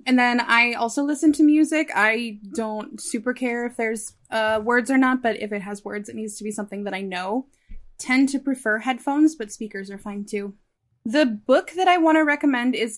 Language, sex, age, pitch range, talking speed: English, female, 10-29, 215-265 Hz, 215 wpm